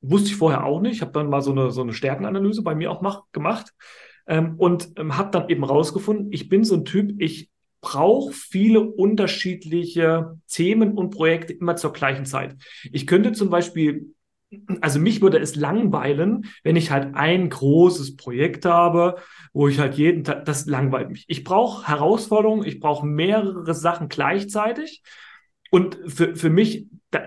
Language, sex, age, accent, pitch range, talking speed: German, male, 40-59, German, 145-185 Hz, 175 wpm